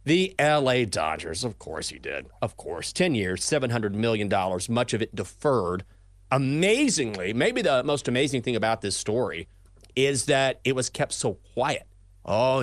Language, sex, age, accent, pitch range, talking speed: English, male, 30-49, American, 100-140 Hz, 160 wpm